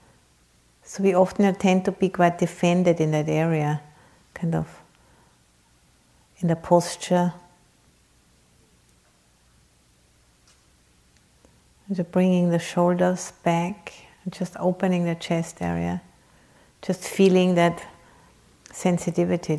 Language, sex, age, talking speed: English, female, 50-69, 100 wpm